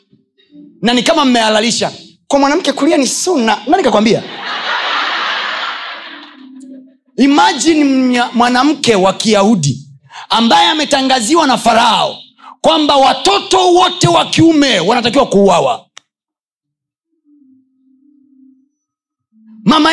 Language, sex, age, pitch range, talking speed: Swahili, male, 30-49, 200-290 Hz, 80 wpm